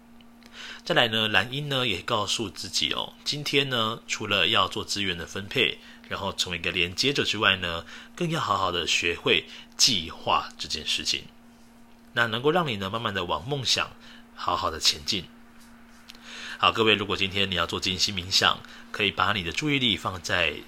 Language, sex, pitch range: Chinese, male, 90-125 Hz